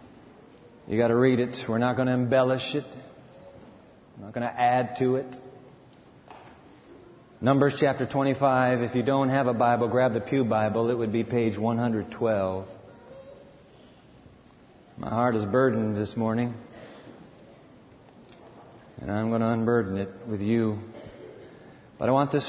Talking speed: 145 wpm